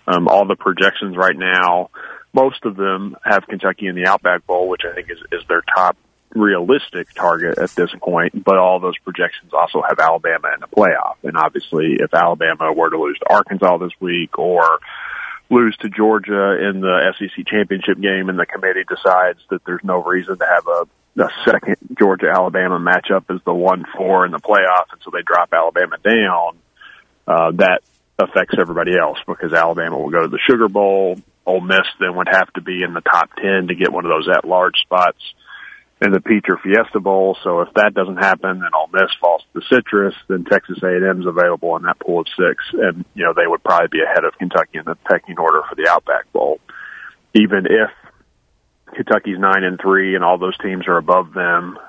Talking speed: 200 wpm